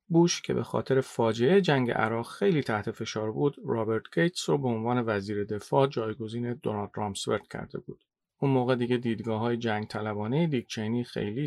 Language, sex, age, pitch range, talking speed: Persian, male, 40-59, 110-135 Hz, 160 wpm